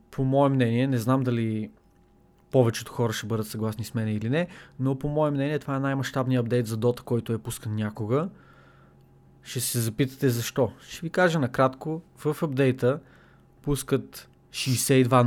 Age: 20-39